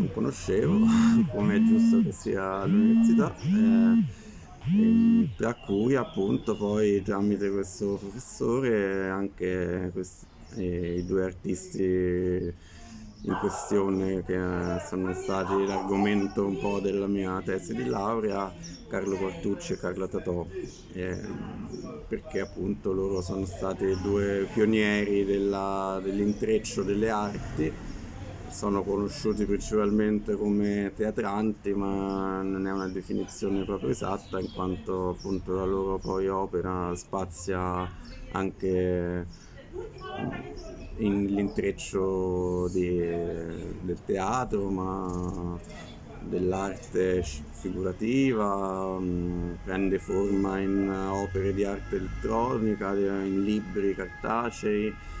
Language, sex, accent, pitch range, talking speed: Italian, male, native, 90-105 Hz, 100 wpm